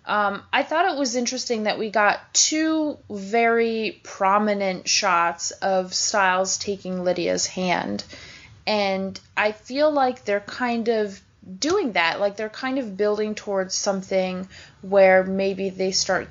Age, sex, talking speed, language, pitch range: 20-39, female, 140 wpm, English, 190-235 Hz